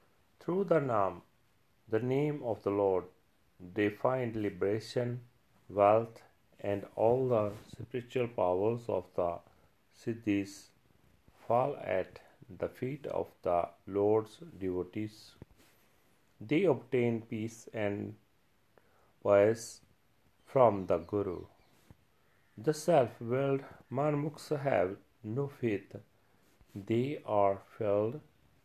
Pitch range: 100-125 Hz